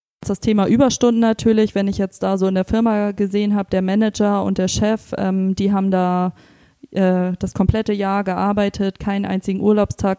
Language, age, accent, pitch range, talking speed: German, 20-39, German, 190-210 Hz, 185 wpm